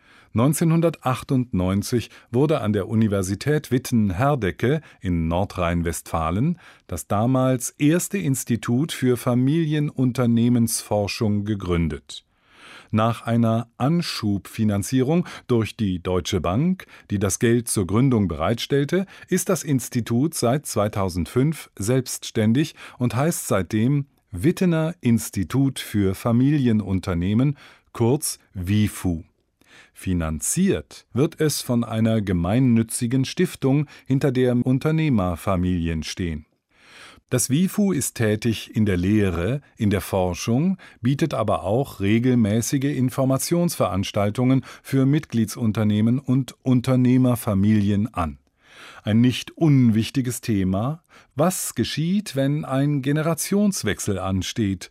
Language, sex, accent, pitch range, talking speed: German, male, German, 105-140 Hz, 90 wpm